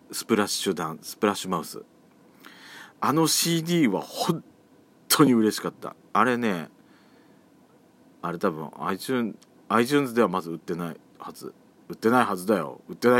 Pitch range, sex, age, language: 90-115 Hz, male, 40-59, Japanese